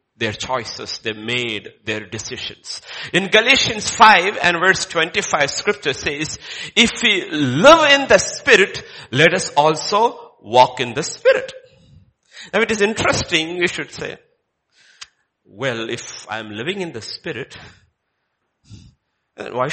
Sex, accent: male, Indian